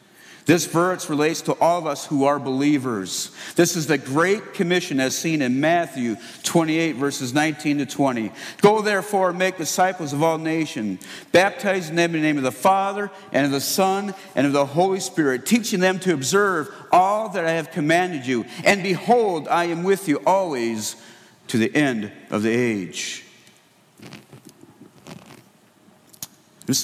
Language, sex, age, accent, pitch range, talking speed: English, male, 50-69, American, 120-170 Hz, 165 wpm